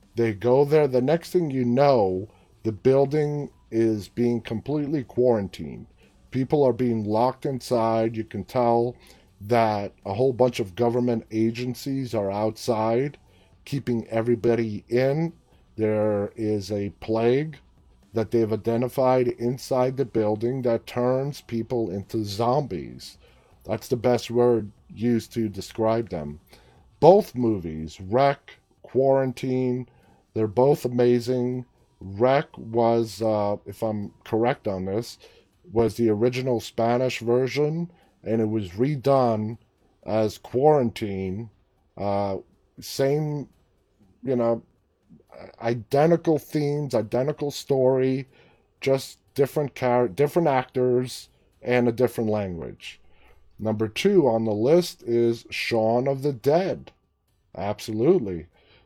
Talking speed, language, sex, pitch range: 115 wpm, English, male, 110-130 Hz